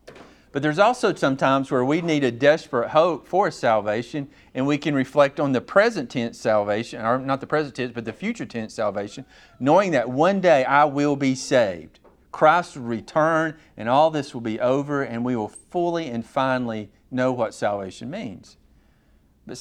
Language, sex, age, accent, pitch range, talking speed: English, male, 50-69, American, 110-140 Hz, 180 wpm